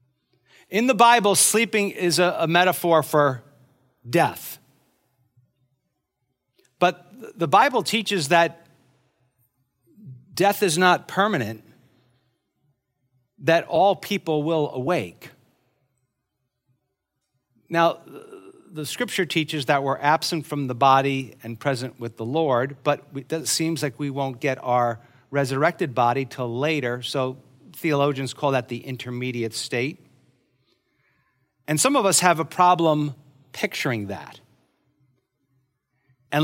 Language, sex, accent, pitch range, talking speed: English, male, American, 130-170 Hz, 110 wpm